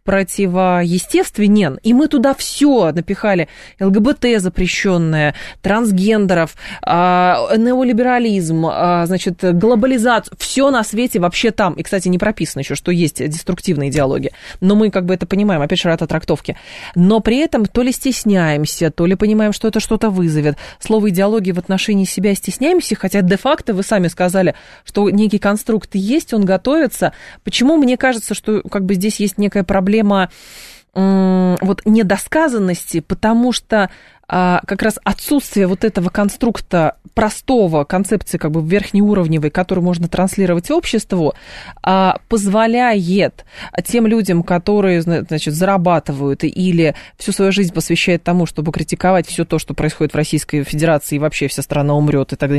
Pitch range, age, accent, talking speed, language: 165-215 Hz, 20-39, native, 145 wpm, Russian